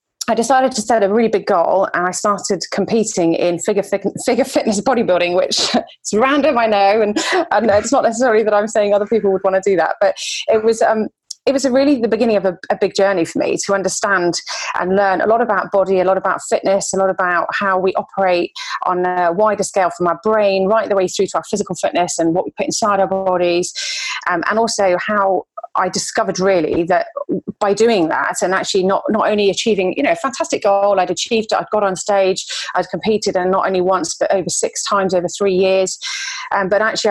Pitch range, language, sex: 180-220 Hz, English, female